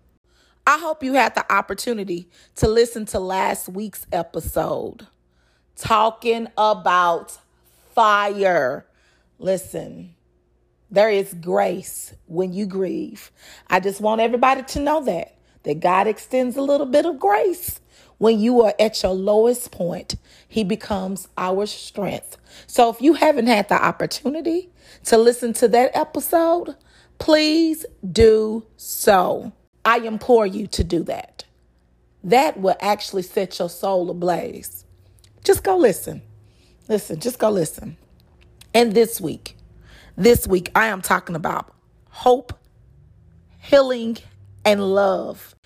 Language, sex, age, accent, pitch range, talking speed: English, female, 40-59, American, 180-240 Hz, 125 wpm